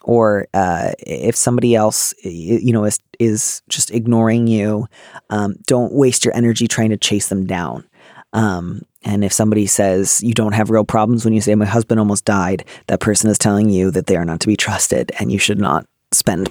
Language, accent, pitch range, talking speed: English, American, 110-130 Hz, 205 wpm